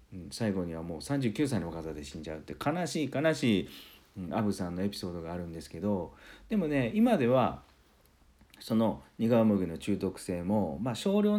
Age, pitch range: 40-59, 80-110 Hz